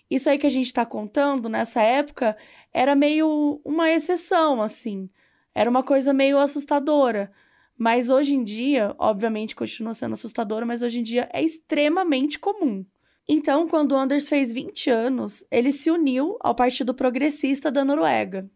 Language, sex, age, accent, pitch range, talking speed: Portuguese, female, 10-29, Brazilian, 240-300 Hz, 160 wpm